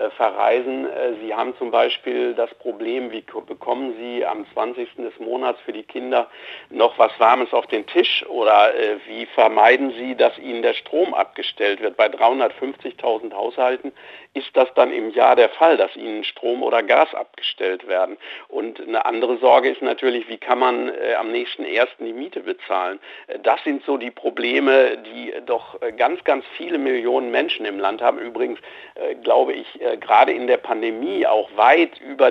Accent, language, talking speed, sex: German, German, 165 wpm, male